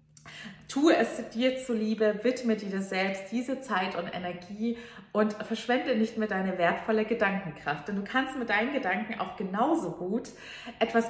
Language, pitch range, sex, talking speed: German, 195-250 Hz, female, 150 wpm